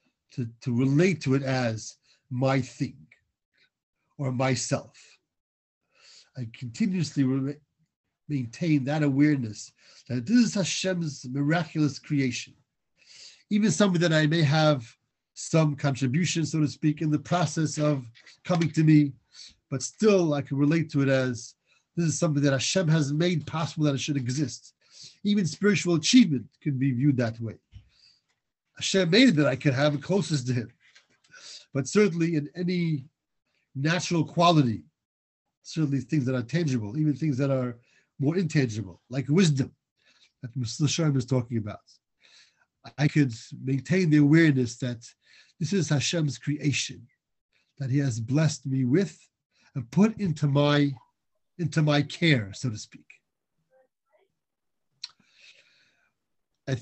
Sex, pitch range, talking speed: male, 130-160 Hz, 135 wpm